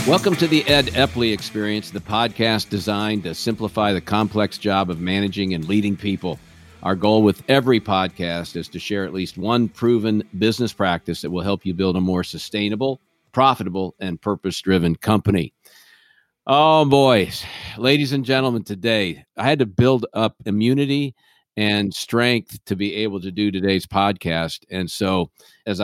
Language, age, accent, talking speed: English, 50-69, American, 160 wpm